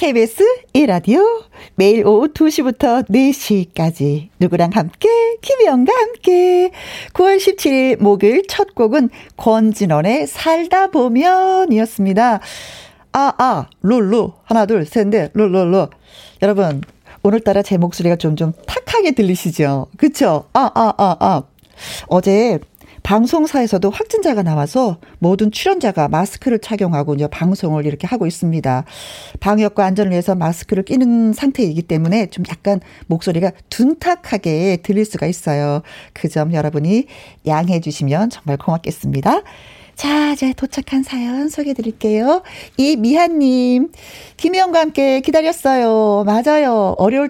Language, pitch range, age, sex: Korean, 180-285 Hz, 40-59, female